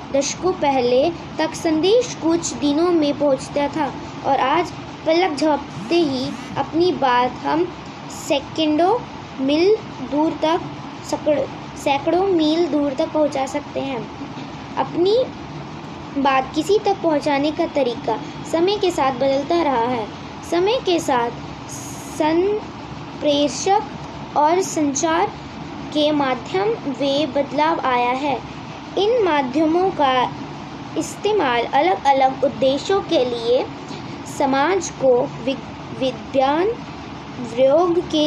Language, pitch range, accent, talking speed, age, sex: English, 270-340 Hz, Indian, 105 wpm, 20-39, female